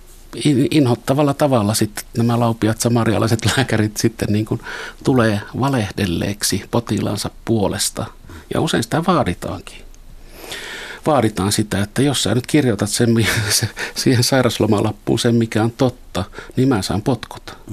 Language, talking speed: Finnish, 125 wpm